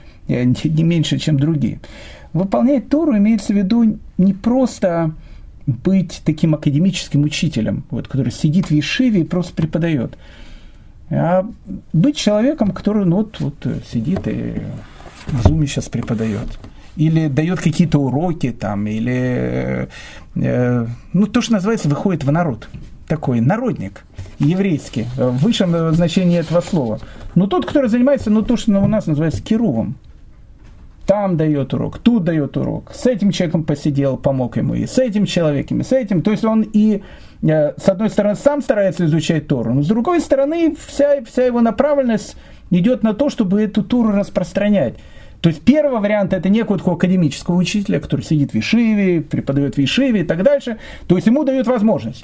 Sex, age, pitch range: male, 50-69, 145-215 Hz